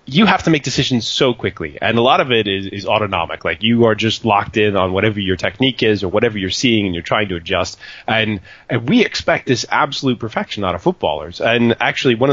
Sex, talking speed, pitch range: male, 235 wpm, 100-125 Hz